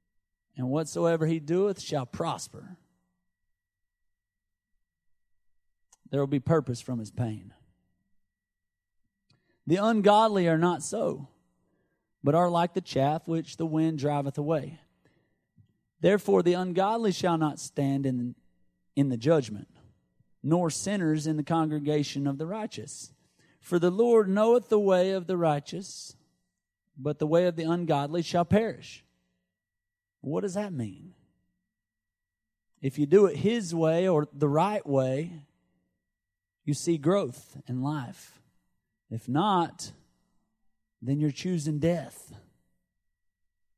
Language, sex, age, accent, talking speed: English, male, 40-59, American, 120 wpm